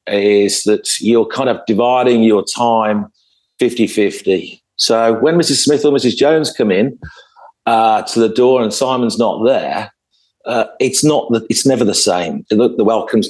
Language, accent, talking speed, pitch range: English, British, 165 wpm, 105-145 Hz